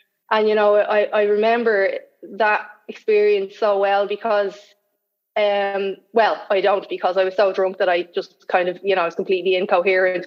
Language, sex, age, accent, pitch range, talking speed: English, female, 20-39, Irish, 190-215 Hz, 180 wpm